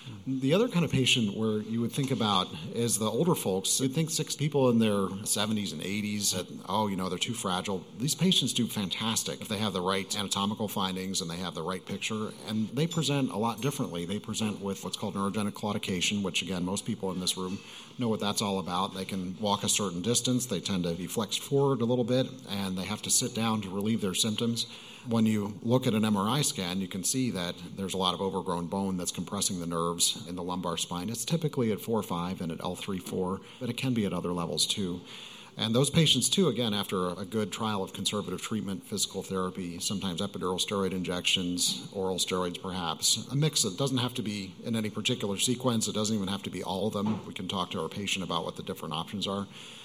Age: 40-59